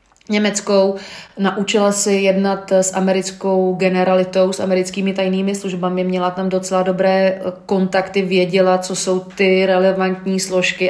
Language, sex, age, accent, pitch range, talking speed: Czech, female, 30-49, native, 185-200 Hz, 120 wpm